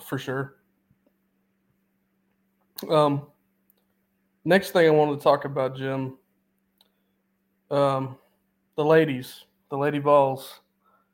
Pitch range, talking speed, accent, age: 140-165 Hz, 90 wpm, American, 20-39